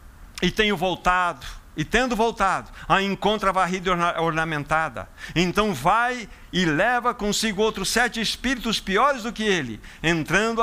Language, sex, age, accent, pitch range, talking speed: Portuguese, male, 60-79, Brazilian, 155-220 Hz, 135 wpm